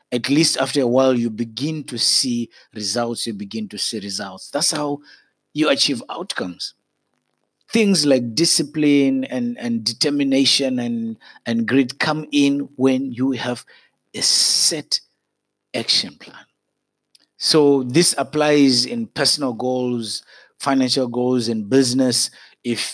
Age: 50-69